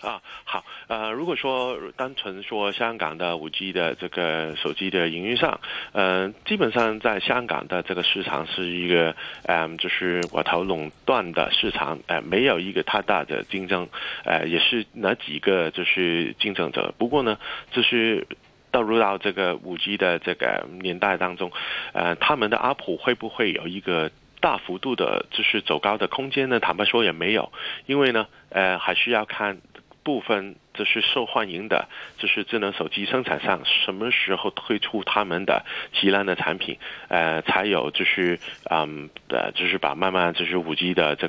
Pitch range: 85-105 Hz